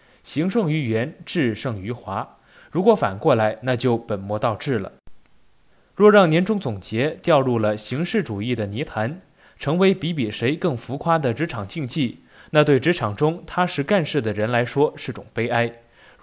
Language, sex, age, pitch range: Chinese, male, 20-39, 115-170 Hz